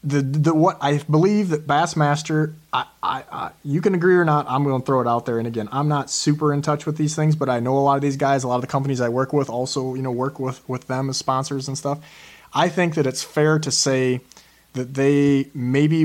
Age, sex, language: 30-49, male, English